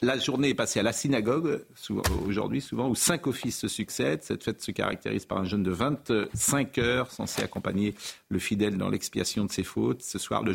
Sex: male